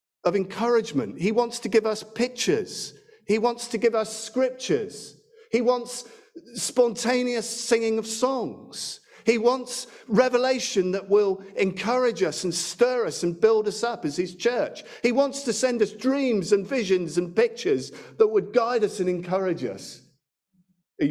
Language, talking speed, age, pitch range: English, 155 wpm, 50-69, 175-255 Hz